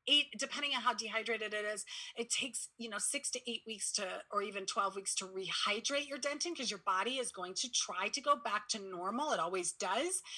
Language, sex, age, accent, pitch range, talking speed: English, female, 30-49, American, 195-270 Hz, 225 wpm